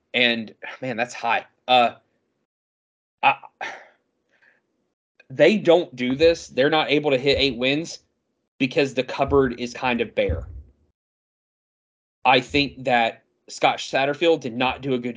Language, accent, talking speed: English, American, 135 wpm